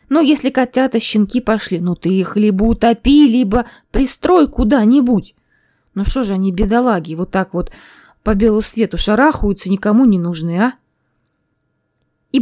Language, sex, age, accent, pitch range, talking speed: Russian, female, 20-39, native, 195-255 Hz, 145 wpm